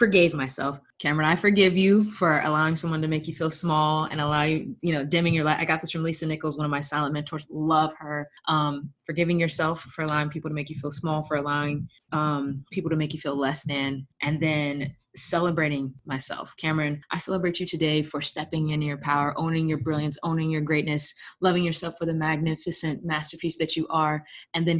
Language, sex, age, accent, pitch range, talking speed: English, female, 20-39, American, 145-165 Hz, 210 wpm